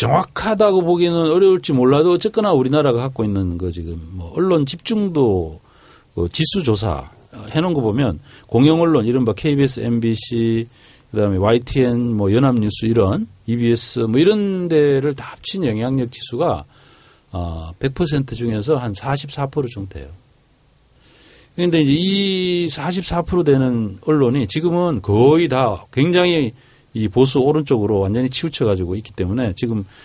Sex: male